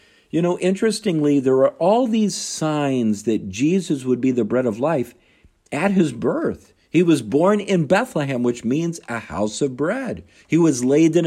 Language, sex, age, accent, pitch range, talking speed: English, male, 50-69, American, 130-180 Hz, 180 wpm